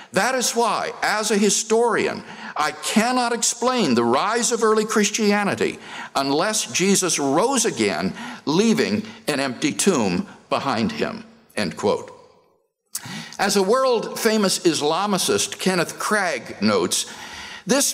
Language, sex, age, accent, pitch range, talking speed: English, male, 60-79, American, 170-240 Hz, 105 wpm